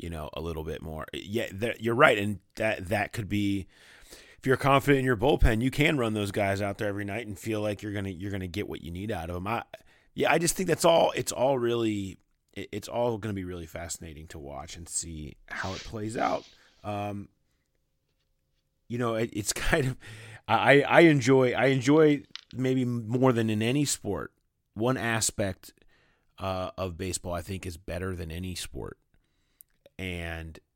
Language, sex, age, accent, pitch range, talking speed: English, male, 30-49, American, 90-110 Hz, 190 wpm